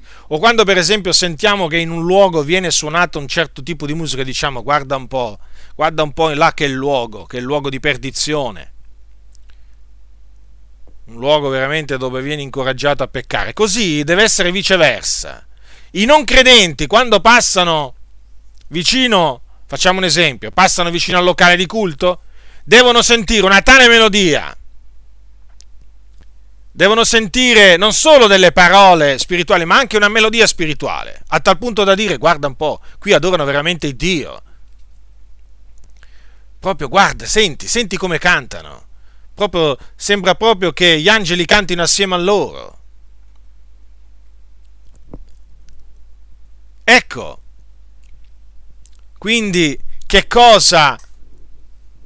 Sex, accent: male, native